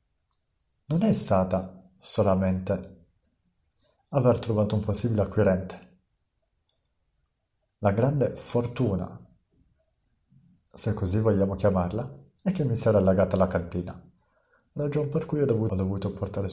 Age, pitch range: 50-69, 95-120 Hz